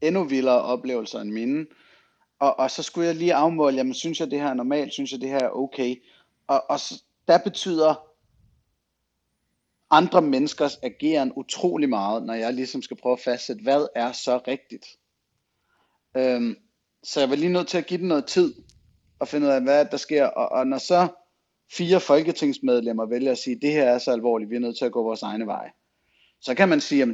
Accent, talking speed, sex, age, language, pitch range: native, 205 wpm, male, 30-49, Danish, 120-165 Hz